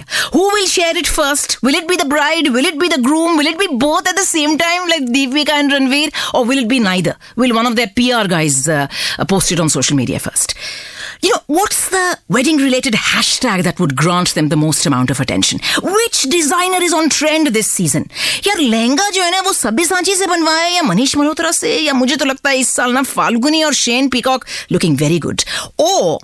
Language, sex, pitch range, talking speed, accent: English, female, 205-310 Hz, 170 wpm, Indian